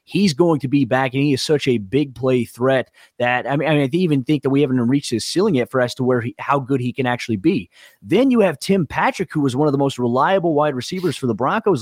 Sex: male